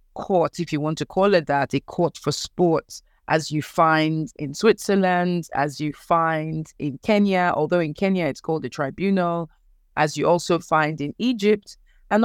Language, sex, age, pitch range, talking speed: English, female, 30-49, 155-195 Hz, 175 wpm